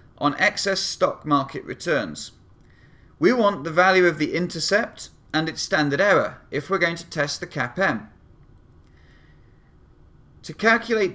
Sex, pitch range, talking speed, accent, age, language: male, 140-180 Hz, 135 wpm, British, 30-49, English